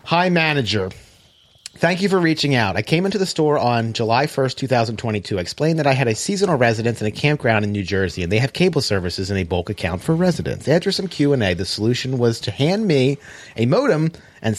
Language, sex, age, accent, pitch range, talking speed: English, male, 30-49, American, 110-165 Hz, 220 wpm